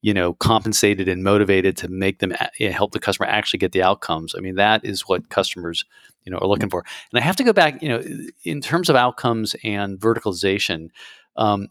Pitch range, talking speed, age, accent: 95-120 Hz, 220 wpm, 40-59, American